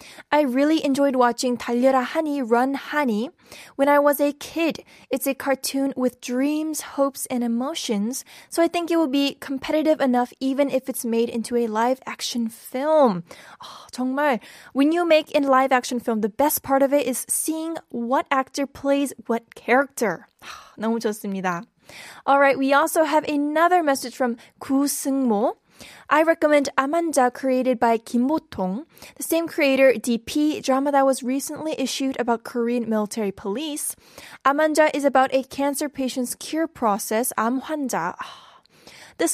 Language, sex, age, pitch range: Korean, female, 10-29, 240-290 Hz